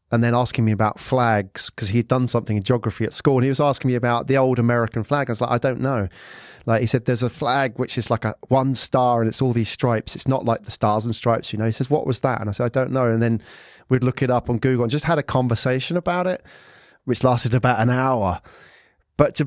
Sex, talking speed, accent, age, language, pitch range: male, 275 wpm, British, 30-49, English, 110-135 Hz